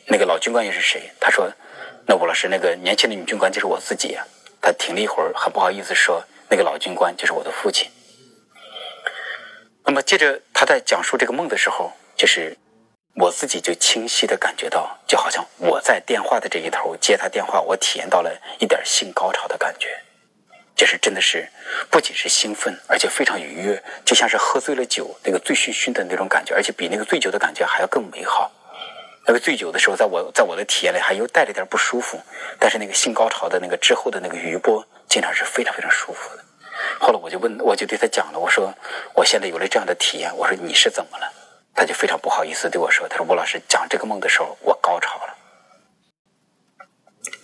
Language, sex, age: Chinese, male, 30-49